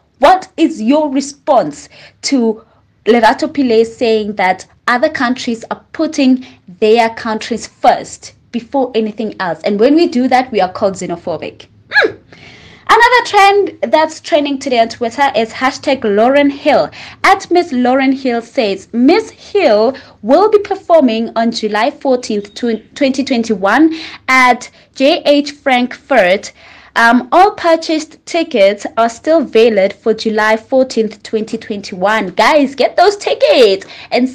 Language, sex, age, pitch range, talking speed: English, female, 20-39, 225-330 Hz, 130 wpm